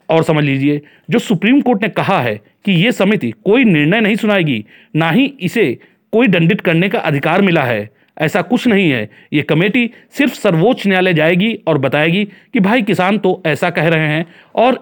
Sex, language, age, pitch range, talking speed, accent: male, Hindi, 40-59, 155-195 Hz, 190 wpm, native